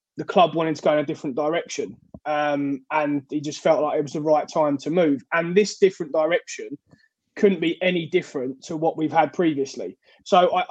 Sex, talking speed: male, 205 wpm